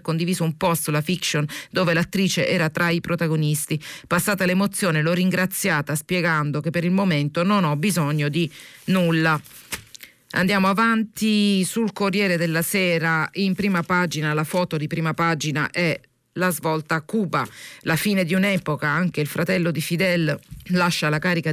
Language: Italian